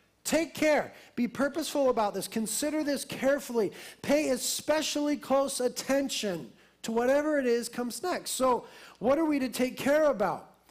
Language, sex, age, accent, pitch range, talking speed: English, male, 40-59, American, 215-285 Hz, 150 wpm